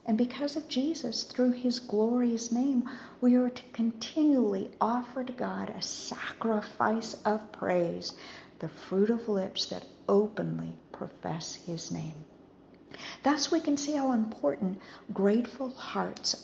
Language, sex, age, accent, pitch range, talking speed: English, female, 50-69, American, 195-260 Hz, 130 wpm